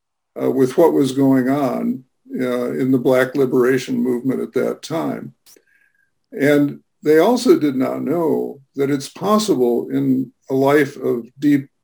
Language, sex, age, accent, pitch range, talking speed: English, male, 50-69, American, 125-150 Hz, 145 wpm